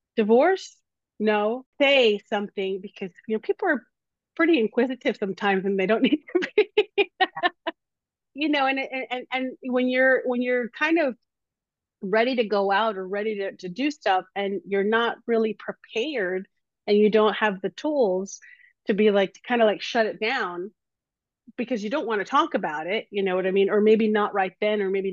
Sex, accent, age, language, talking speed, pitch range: female, American, 30-49, English, 190 wpm, 195-250 Hz